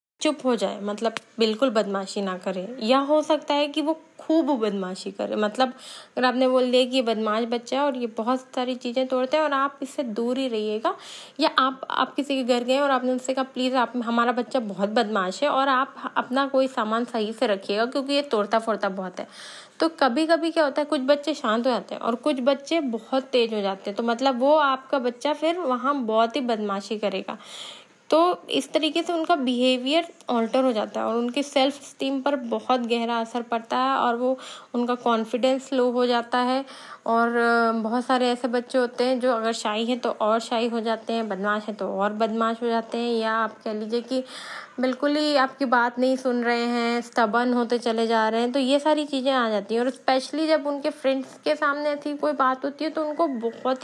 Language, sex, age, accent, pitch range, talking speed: Hindi, female, 20-39, native, 230-275 Hz, 220 wpm